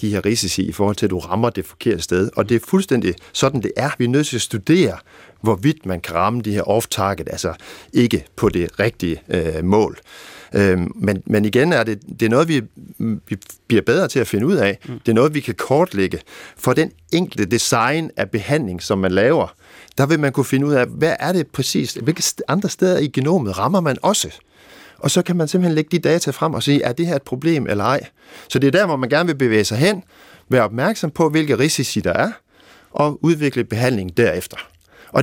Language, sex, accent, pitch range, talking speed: Danish, male, native, 100-160 Hz, 225 wpm